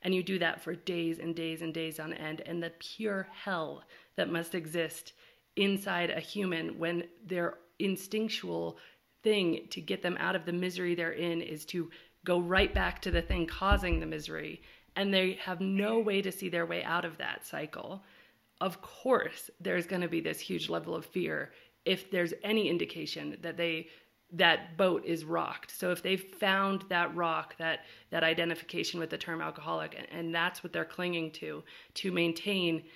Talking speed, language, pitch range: 185 wpm, English, 165-195 Hz